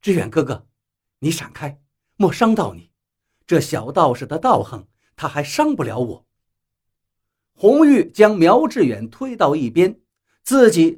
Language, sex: Chinese, male